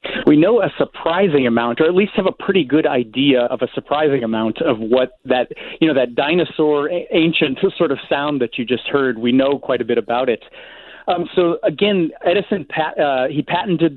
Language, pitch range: English, 125-165 Hz